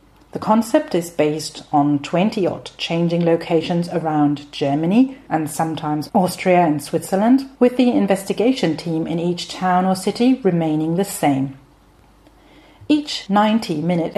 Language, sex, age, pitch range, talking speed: German, female, 40-59, 165-220 Hz, 125 wpm